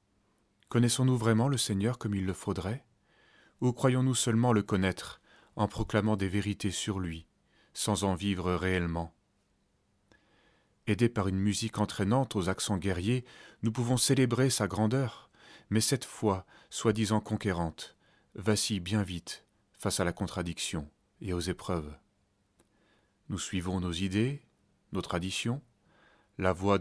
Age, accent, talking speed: 30-49, French, 130 wpm